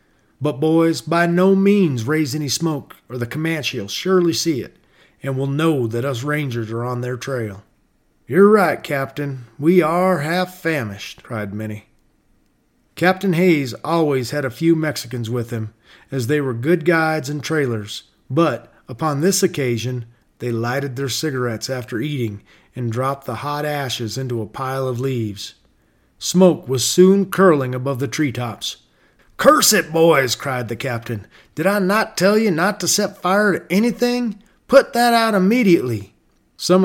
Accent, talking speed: American, 160 wpm